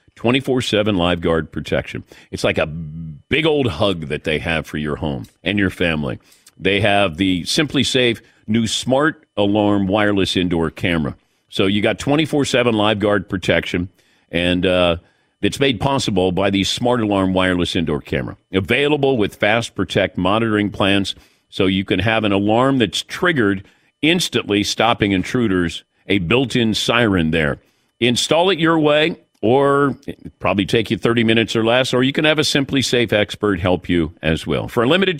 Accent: American